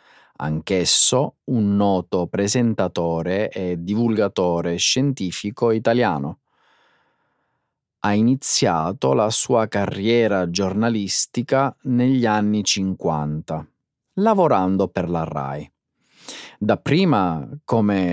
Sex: male